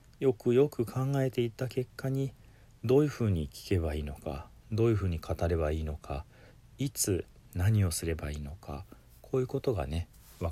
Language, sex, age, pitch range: Japanese, male, 40-59, 80-115 Hz